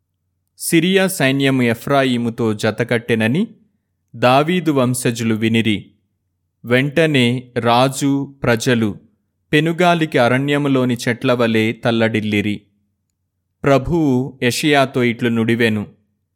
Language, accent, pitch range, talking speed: Telugu, native, 110-140 Hz, 65 wpm